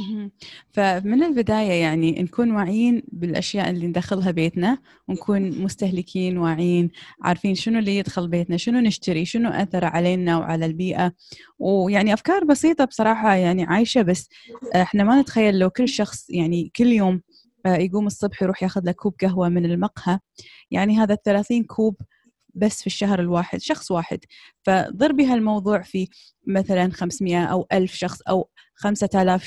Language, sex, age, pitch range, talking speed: Arabic, female, 20-39, 180-210 Hz, 140 wpm